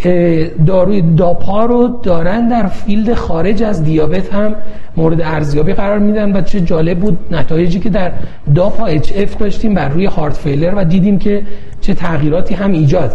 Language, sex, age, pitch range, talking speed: Persian, male, 40-59, 160-215 Hz, 165 wpm